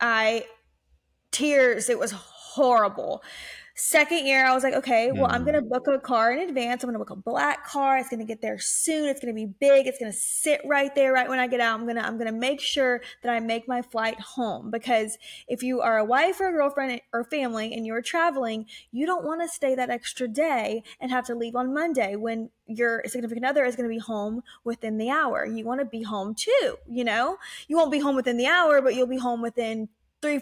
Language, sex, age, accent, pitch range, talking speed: English, female, 20-39, American, 225-280 Hz, 230 wpm